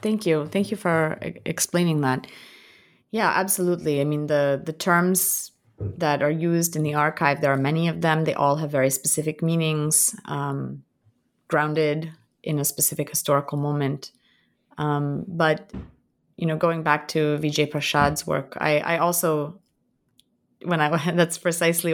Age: 30-49